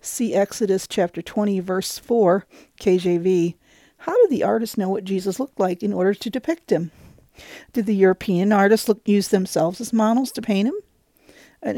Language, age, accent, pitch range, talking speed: English, 50-69, American, 185-240 Hz, 170 wpm